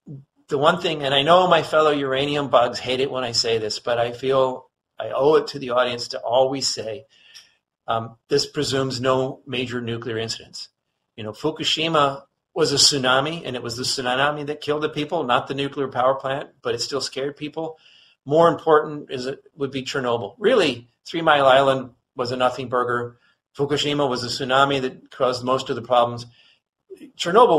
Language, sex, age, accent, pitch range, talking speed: English, male, 40-59, American, 125-150 Hz, 185 wpm